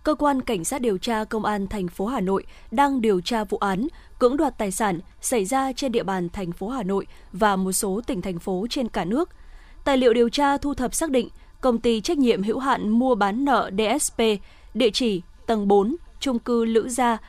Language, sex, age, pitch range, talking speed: Vietnamese, female, 20-39, 210-255 Hz, 225 wpm